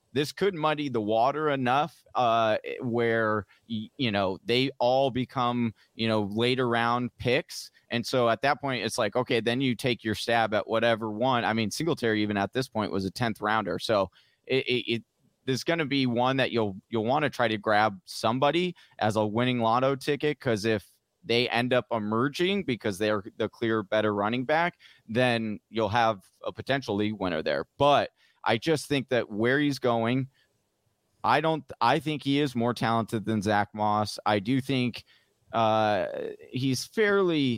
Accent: American